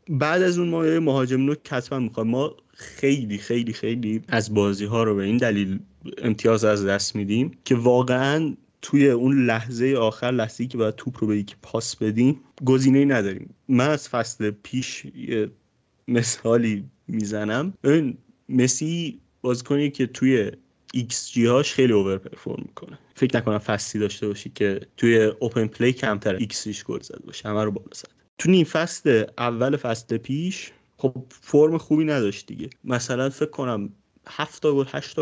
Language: Persian